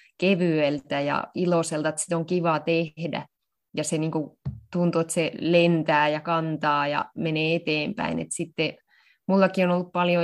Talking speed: 150 wpm